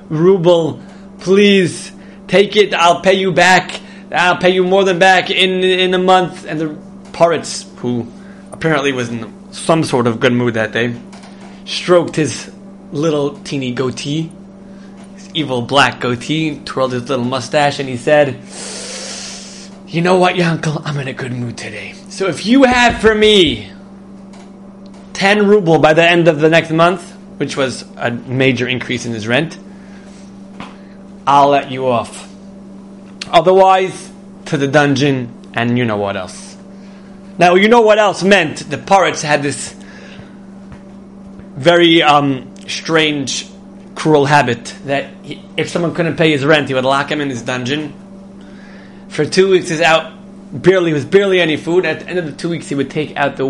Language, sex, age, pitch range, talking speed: English, male, 20-39, 145-195 Hz, 165 wpm